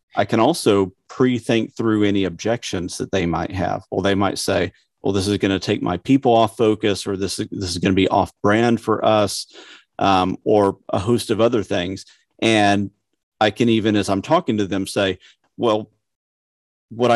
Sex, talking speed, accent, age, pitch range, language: male, 190 wpm, American, 40-59, 95-110 Hz, English